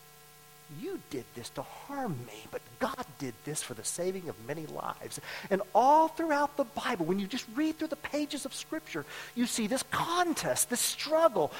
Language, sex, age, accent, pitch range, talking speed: English, male, 40-59, American, 150-195 Hz, 185 wpm